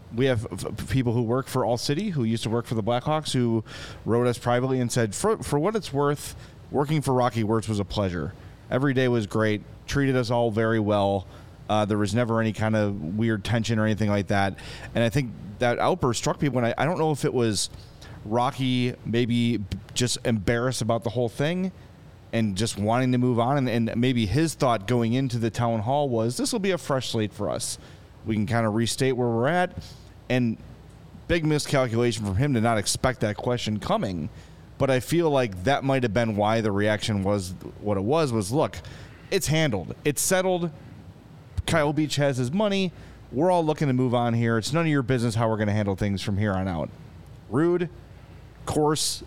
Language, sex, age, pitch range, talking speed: English, male, 30-49, 110-135 Hz, 210 wpm